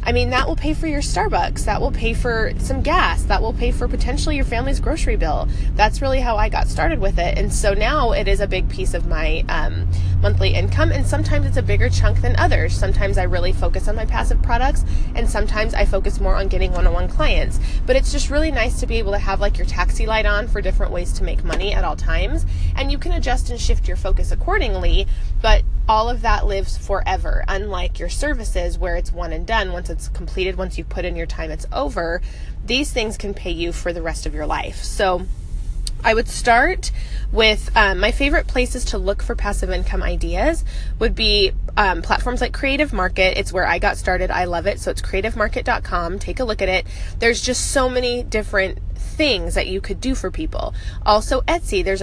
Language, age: English, 20-39